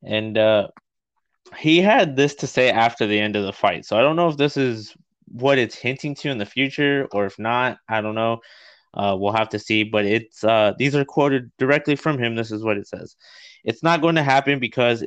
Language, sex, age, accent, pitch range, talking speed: English, male, 20-39, American, 105-130 Hz, 230 wpm